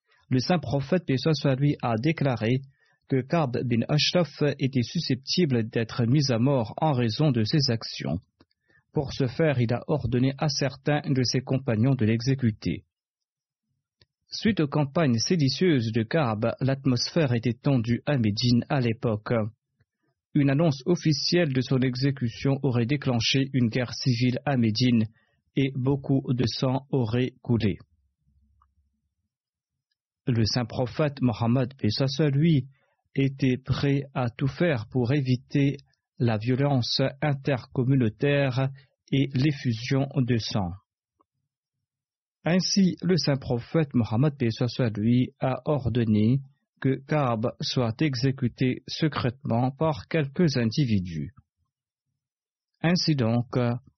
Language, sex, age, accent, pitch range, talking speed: French, male, 40-59, French, 120-145 Hz, 115 wpm